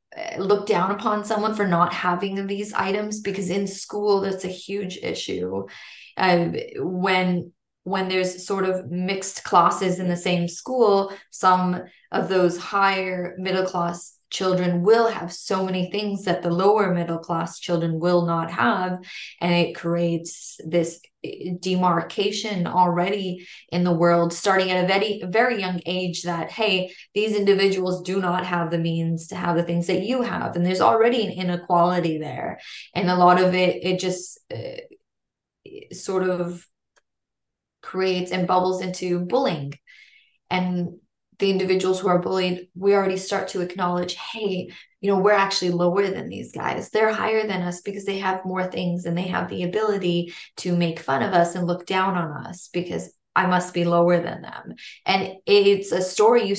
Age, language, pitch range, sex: 20-39, English, 175-195 Hz, female